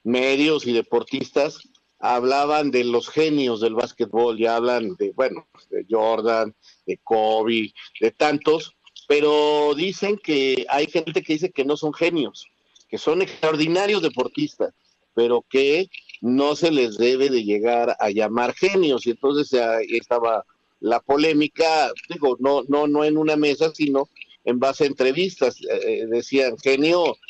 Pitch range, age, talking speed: 120-170 Hz, 50-69, 145 wpm